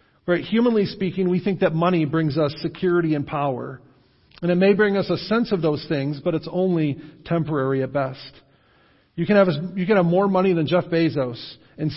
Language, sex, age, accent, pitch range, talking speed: English, male, 40-59, American, 145-185 Hz, 190 wpm